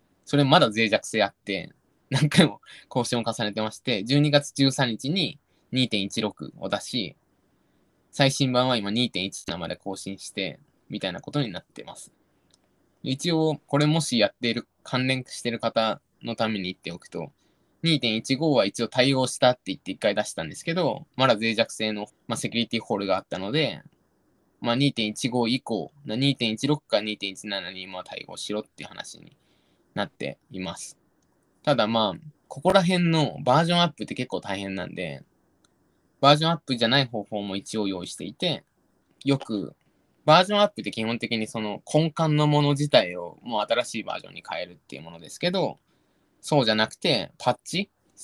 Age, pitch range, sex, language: 20-39, 110-145 Hz, male, Japanese